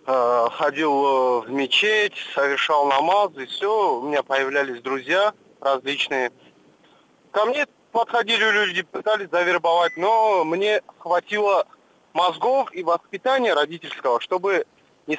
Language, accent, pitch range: Russian, native, 145-210 Hz